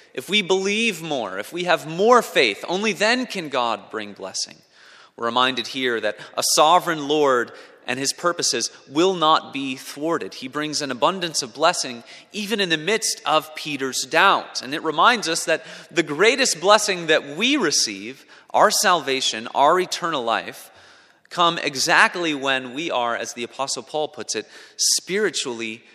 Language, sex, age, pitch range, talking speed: English, male, 30-49, 120-165 Hz, 160 wpm